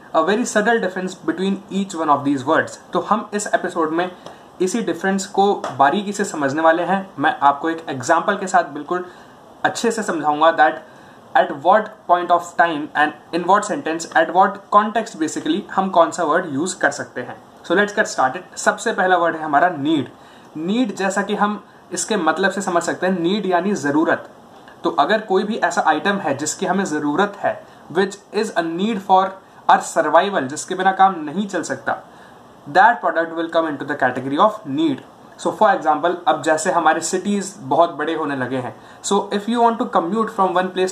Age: 20-39